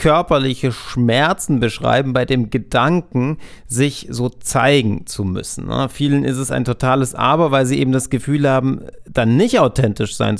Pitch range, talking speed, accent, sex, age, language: 110-135 Hz, 155 wpm, German, male, 30-49, German